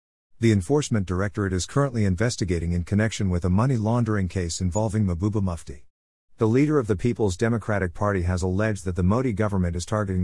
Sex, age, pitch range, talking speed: male, 50-69, 90-110 Hz, 180 wpm